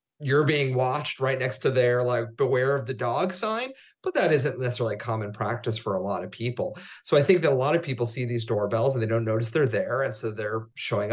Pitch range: 125-195 Hz